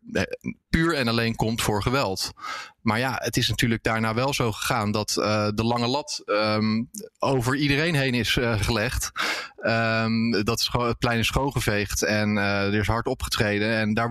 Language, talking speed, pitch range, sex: Dutch, 175 wpm, 105-125 Hz, male